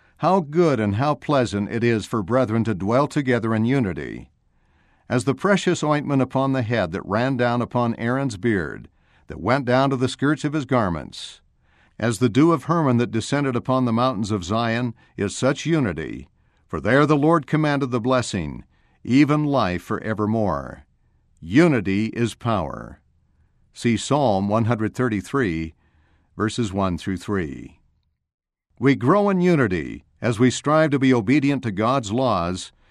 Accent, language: American, English